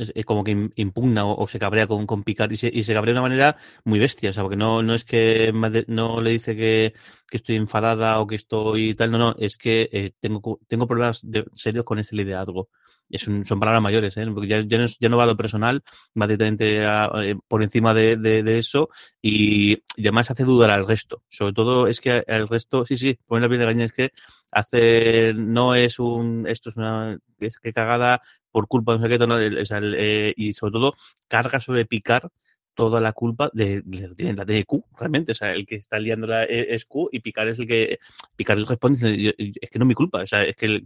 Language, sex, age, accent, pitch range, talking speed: Spanish, male, 30-49, Spanish, 110-120 Hz, 235 wpm